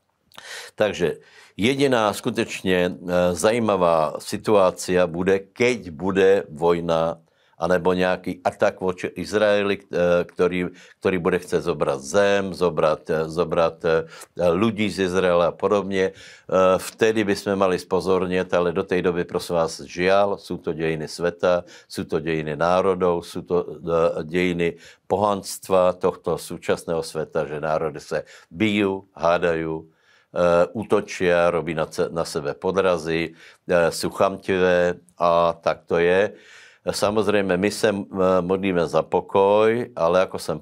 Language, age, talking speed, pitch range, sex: Slovak, 60-79, 110 wpm, 85-100 Hz, male